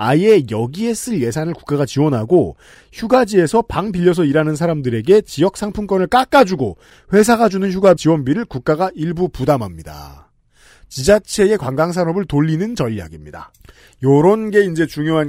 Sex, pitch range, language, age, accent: male, 135-200 Hz, Korean, 40-59, native